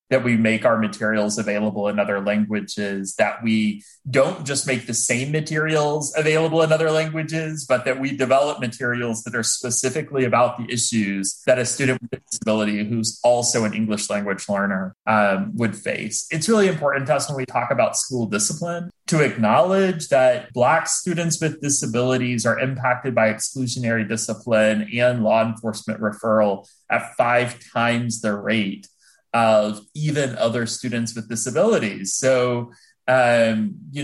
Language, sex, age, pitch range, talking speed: English, male, 30-49, 110-135 Hz, 155 wpm